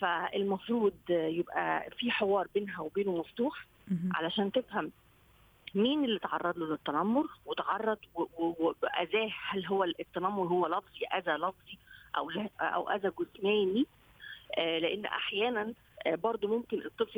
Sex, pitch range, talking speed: female, 190-260 Hz, 110 wpm